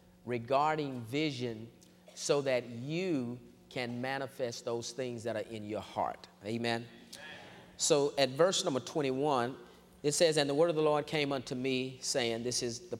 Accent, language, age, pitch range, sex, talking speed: American, English, 40-59, 115-135 Hz, male, 160 wpm